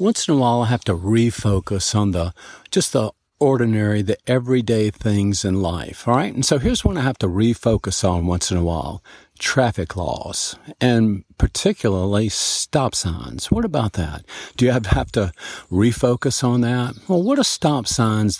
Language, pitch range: English, 100-130 Hz